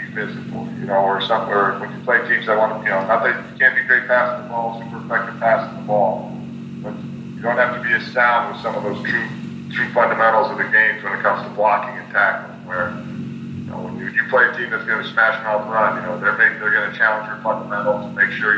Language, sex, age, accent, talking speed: English, male, 40-59, American, 265 wpm